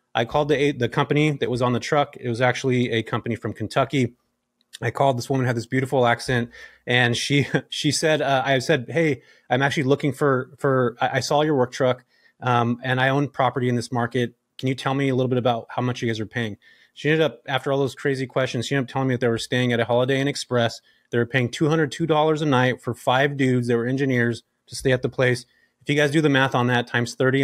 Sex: male